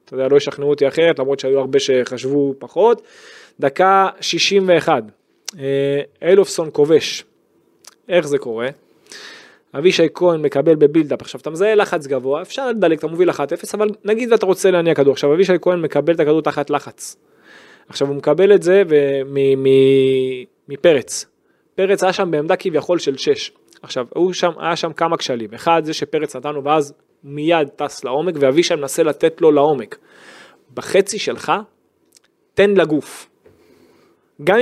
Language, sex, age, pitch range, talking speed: Hebrew, male, 20-39, 145-215 Hz, 150 wpm